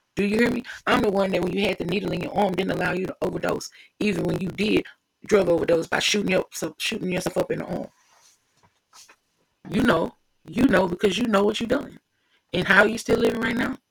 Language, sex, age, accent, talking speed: English, female, 30-49, American, 235 wpm